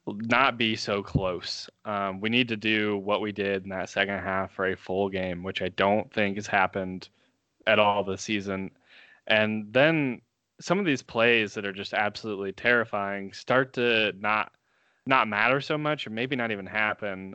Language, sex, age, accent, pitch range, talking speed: English, male, 20-39, American, 100-115 Hz, 185 wpm